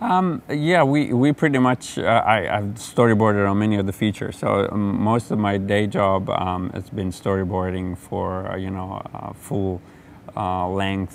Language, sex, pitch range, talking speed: English, male, 95-105 Hz, 170 wpm